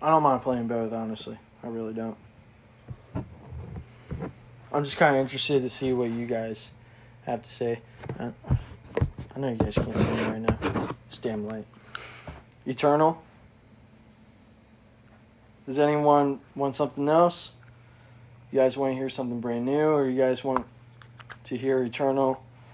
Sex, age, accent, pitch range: male, 20-39, American, 115-135 Hz